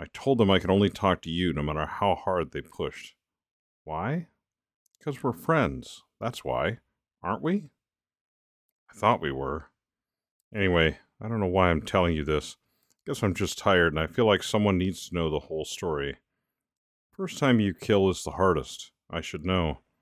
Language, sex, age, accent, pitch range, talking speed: English, male, 50-69, American, 85-120 Hz, 185 wpm